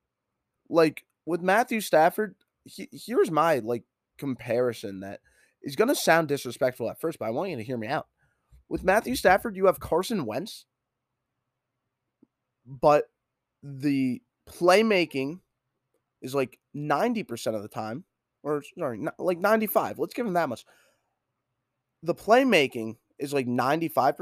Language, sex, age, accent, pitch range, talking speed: English, male, 20-39, American, 125-185 Hz, 135 wpm